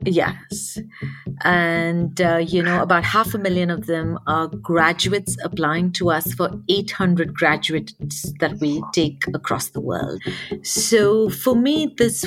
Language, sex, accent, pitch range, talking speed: English, female, Indian, 165-215 Hz, 140 wpm